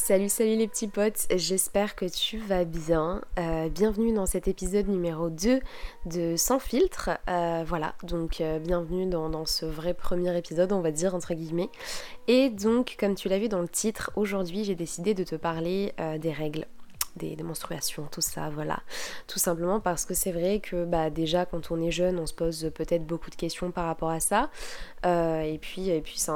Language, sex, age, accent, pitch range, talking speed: French, female, 20-39, French, 165-205 Hz, 205 wpm